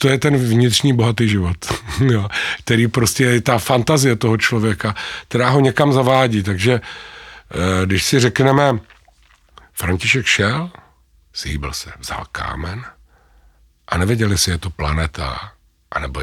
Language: Czech